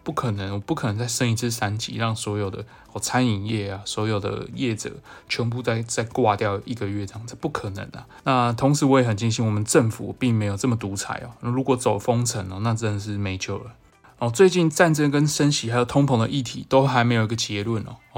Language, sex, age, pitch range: Chinese, male, 20-39, 105-125 Hz